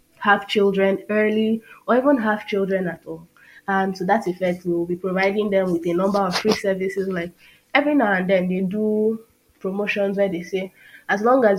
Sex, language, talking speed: female, English, 190 wpm